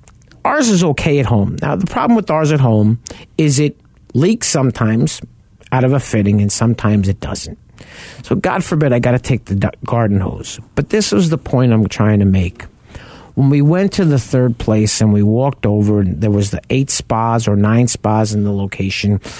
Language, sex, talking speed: English, male, 205 wpm